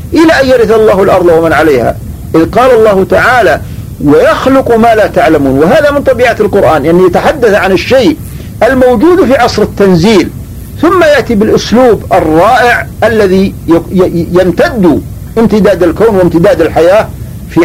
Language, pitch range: Arabic, 175-240 Hz